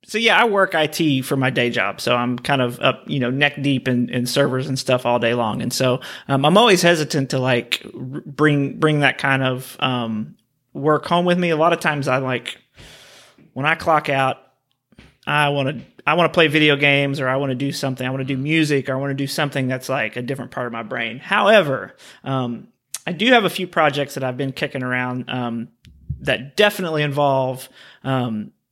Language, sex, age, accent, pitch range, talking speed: English, male, 30-49, American, 130-155 Hz, 225 wpm